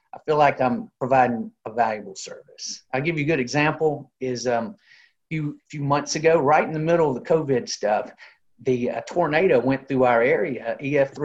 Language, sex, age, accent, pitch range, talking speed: English, male, 50-69, American, 125-145 Hz, 195 wpm